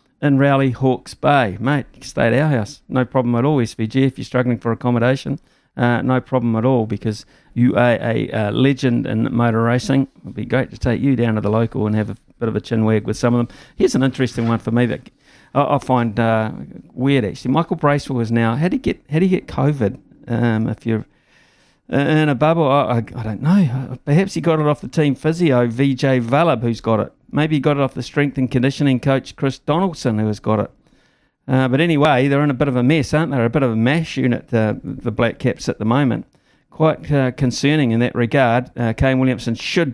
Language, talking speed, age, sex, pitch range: English, 235 wpm, 50-69, male, 115-135 Hz